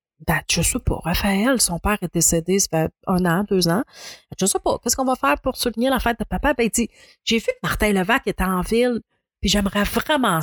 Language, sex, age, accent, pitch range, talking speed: French, female, 30-49, Canadian, 180-235 Hz, 240 wpm